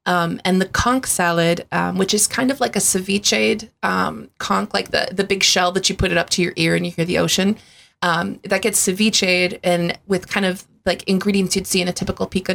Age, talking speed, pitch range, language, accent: 20-39, 235 wpm, 180-215 Hz, English, American